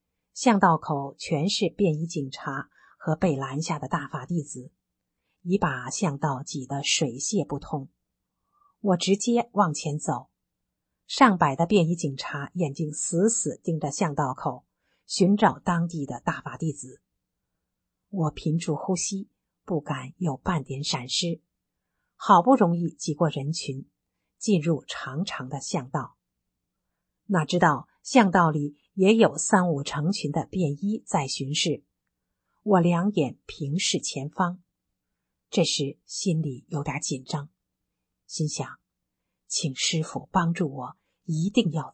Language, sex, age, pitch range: Chinese, female, 50-69, 140-185 Hz